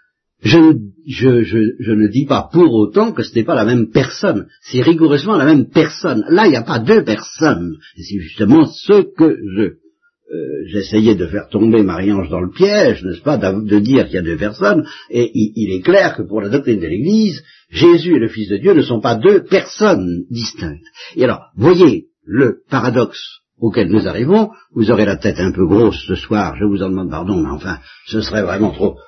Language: French